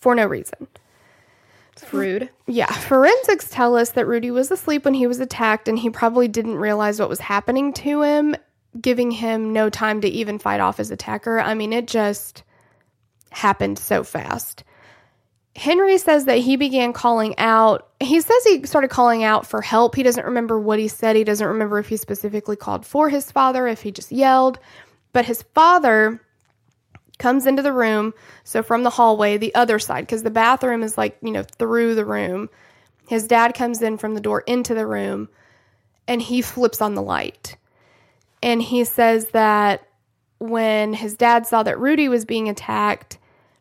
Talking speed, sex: 180 wpm, female